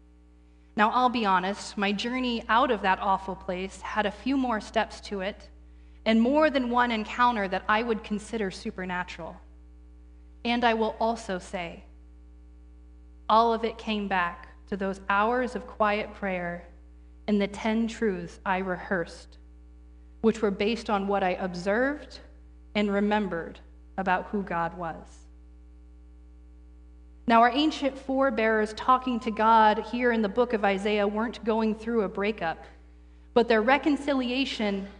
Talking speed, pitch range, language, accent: 145 wpm, 165-235 Hz, English, American